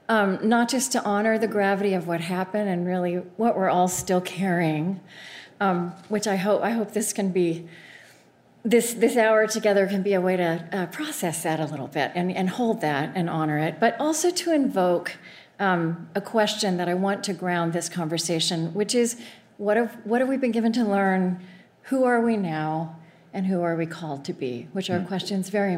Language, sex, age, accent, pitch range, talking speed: English, female, 40-59, American, 180-230 Hz, 205 wpm